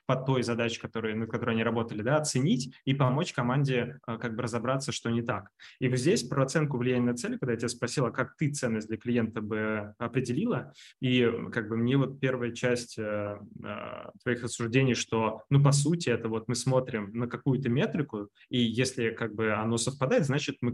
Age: 20-39